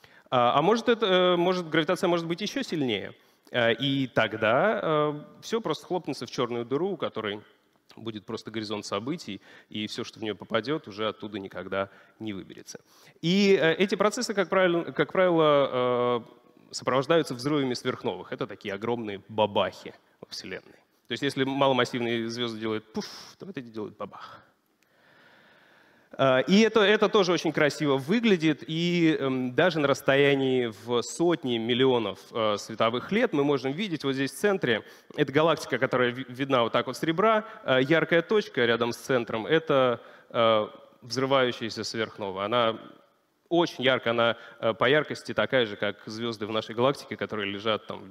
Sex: male